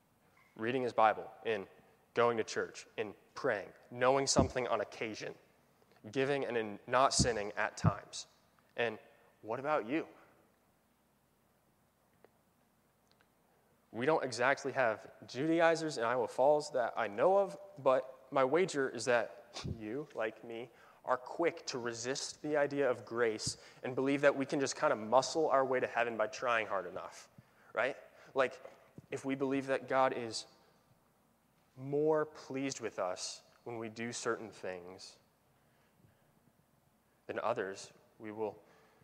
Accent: American